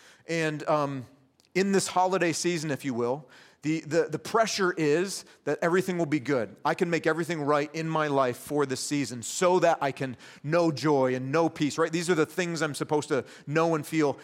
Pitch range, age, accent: 125-155 Hz, 40-59, American